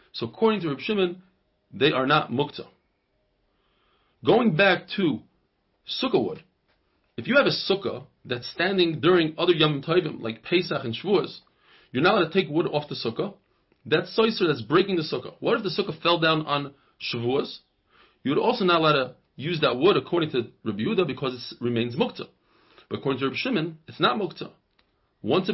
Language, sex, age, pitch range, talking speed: English, male, 30-49, 130-185 Hz, 180 wpm